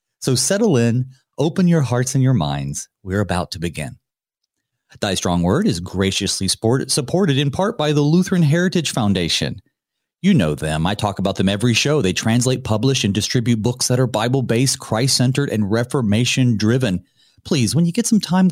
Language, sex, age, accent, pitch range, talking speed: English, male, 40-59, American, 105-150 Hz, 170 wpm